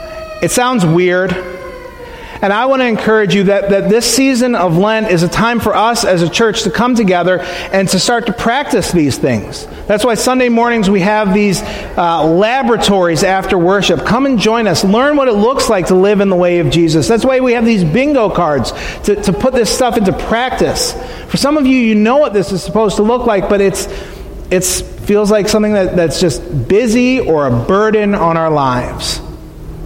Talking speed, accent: 205 wpm, American